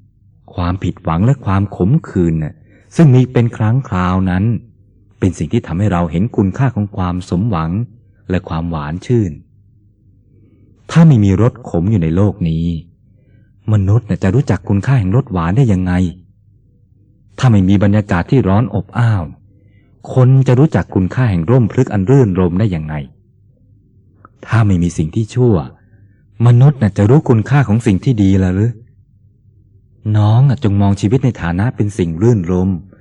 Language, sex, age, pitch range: Thai, male, 30-49, 95-115 Hz